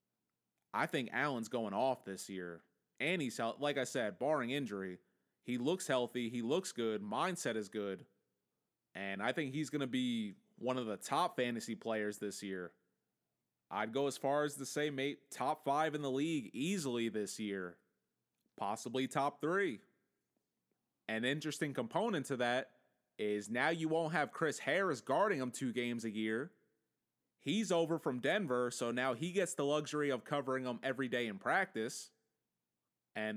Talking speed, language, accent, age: 165 wpm, English, American, 30-49